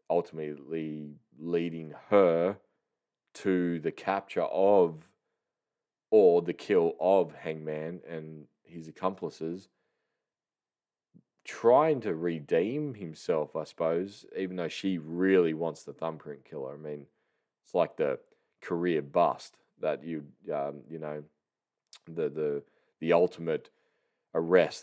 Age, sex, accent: 20-39, male, Australian